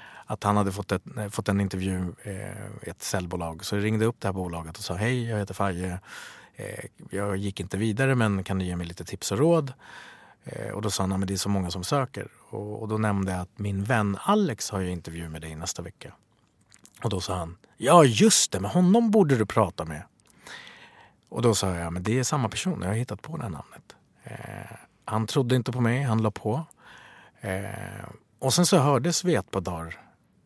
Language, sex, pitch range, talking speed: English, male, 95-115 Hz, 205 wpm